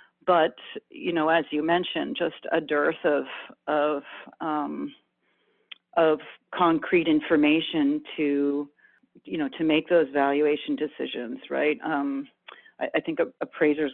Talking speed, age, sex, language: 125 wpm, 40-59, female, English